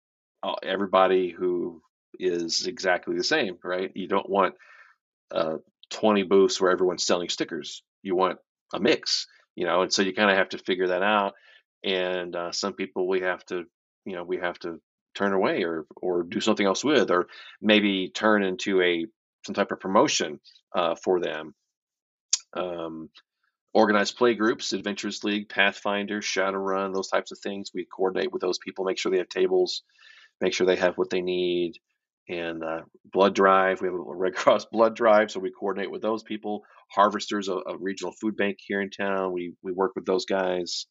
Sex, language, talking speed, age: male, English, 185 wpm, 30-49